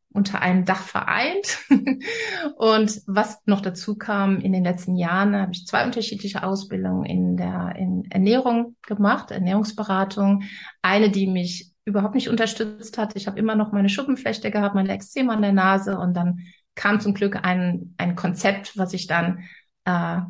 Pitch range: 180-205 Hz